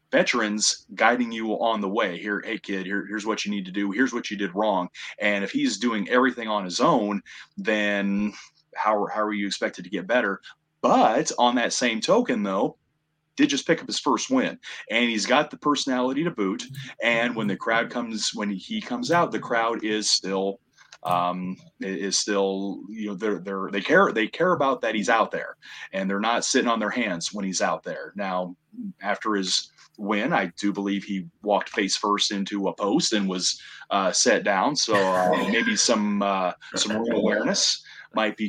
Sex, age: male, 30-49